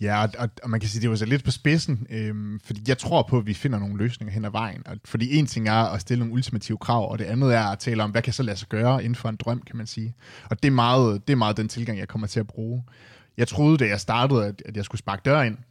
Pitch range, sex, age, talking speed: 110-125 Hz, male, 20-39, 295 wpm